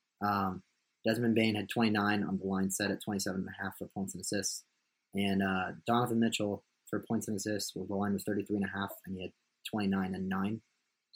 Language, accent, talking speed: English, American, 215 wpm